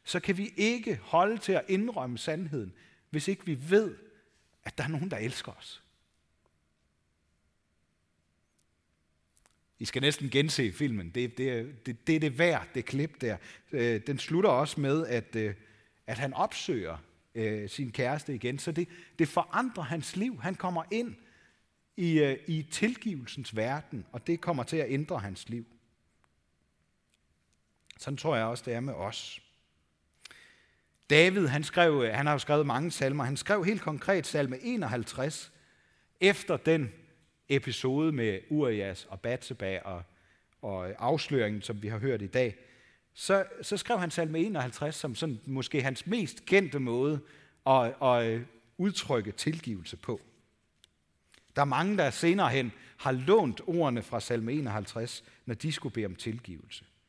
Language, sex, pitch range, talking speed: Danish, male, 110-160 Hz, 150 wpm